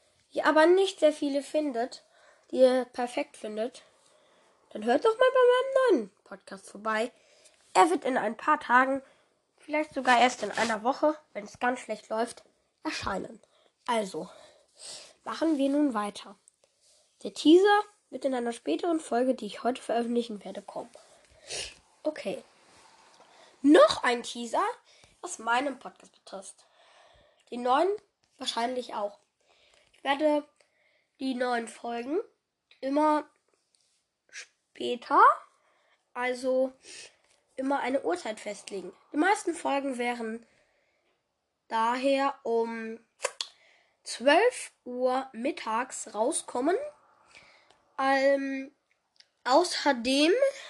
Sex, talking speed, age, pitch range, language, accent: female, 105 wpm, 10-29, 235-305 Hz, German, German